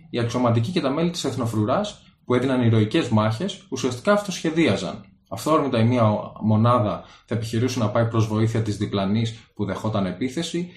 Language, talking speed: Greek, 160 wpm